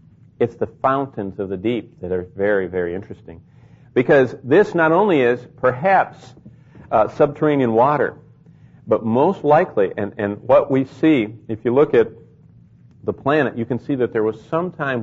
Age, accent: 50-69, American